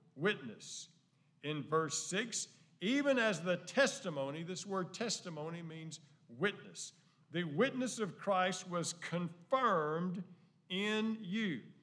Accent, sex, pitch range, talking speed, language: American, male, 160-210 Hz, 105 wpm, English